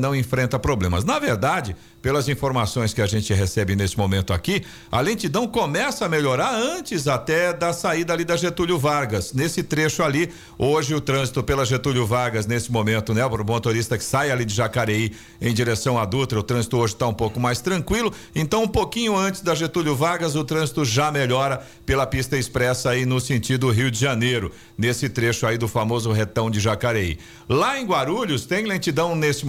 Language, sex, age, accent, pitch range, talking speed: Portuguese, male, 50-69, Brazilian, 125-165 Hz, 185 wpm